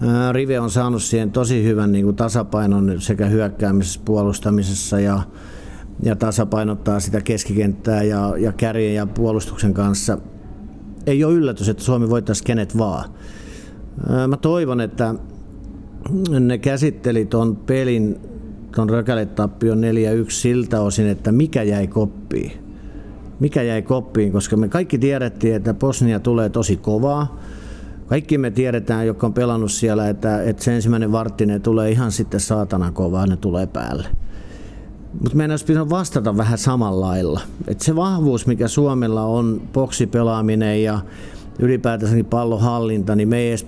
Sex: male